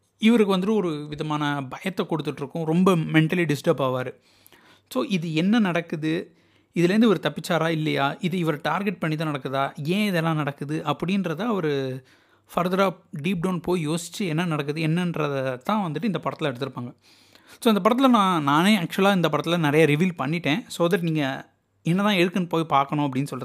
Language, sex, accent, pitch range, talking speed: Tamil, male, native, 150-200 Hz, 155 wpm